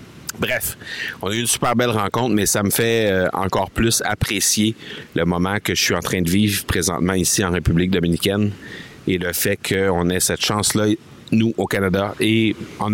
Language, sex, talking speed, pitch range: French, male, 195 wpm, 85-100 Hz